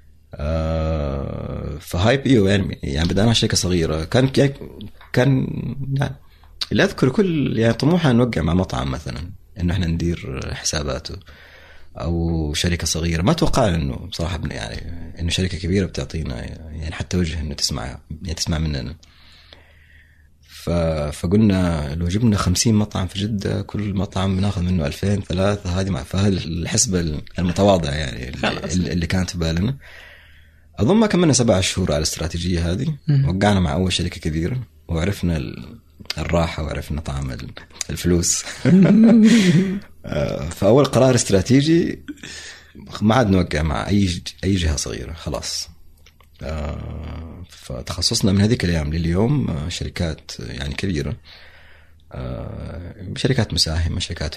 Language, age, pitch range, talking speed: Arabic, 30-49, 80-100 Hz, 120 wpm